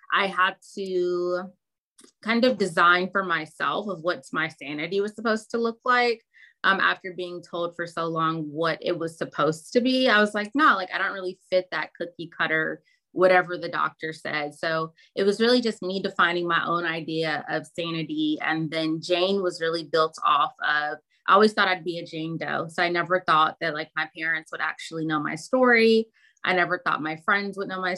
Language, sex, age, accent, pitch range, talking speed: English, female, 20-39, American, 160-190 Hz, 205 wpm